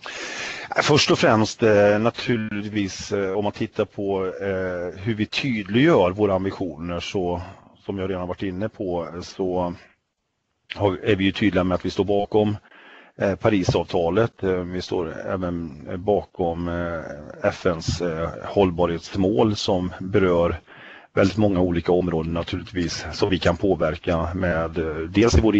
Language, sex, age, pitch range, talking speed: English, male, 30-49, 85-100 Hz, 120 wpm